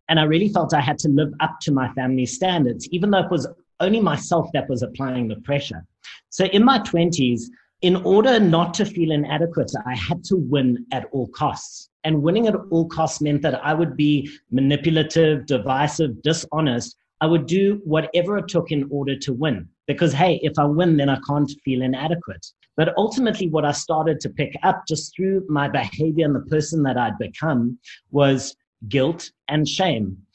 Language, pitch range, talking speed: English, 140-170 Hz, 190 wpm